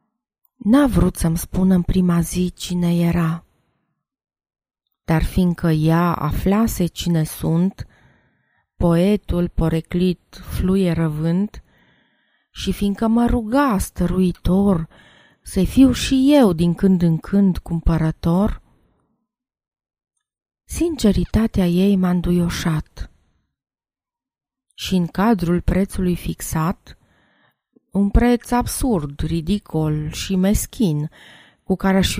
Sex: female